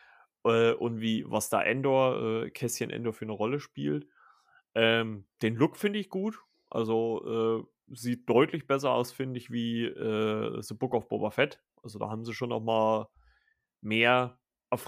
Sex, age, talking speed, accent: male, 30-49, 165 wpm, German